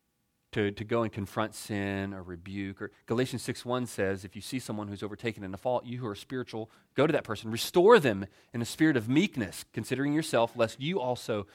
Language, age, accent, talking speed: English, 30-49, American, 215 wpm